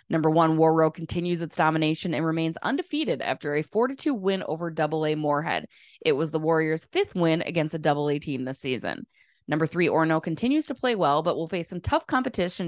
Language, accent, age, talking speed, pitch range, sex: English, American, 20-39, 195 wpm, 155-195 Hz, female